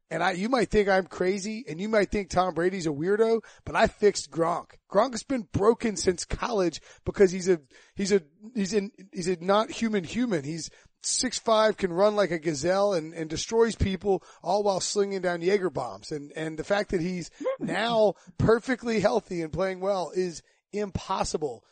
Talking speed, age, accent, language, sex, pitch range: 190 wpm, 30-49, American, English, male, 155-200 Hz